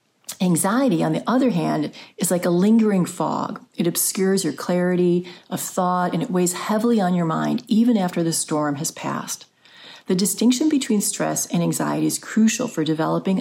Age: 40-59